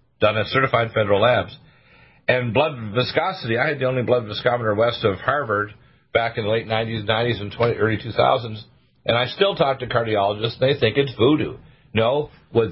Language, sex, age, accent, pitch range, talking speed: English, male, 50-69, American, 105-130 Hz, 190 wpm